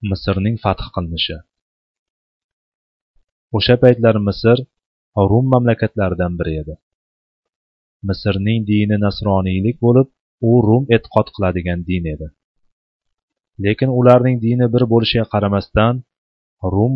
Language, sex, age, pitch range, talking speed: Bulgarian, male, 30-49, 100-120 Hz, 95 wpm